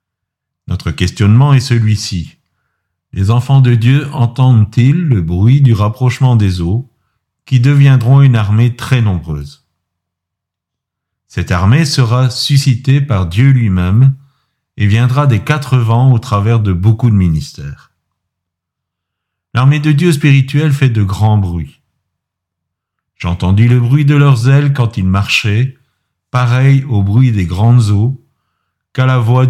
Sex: male